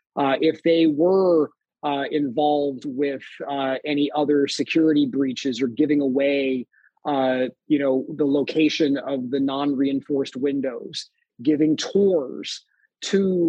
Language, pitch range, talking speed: English, 140-165 Hz, 120 wpm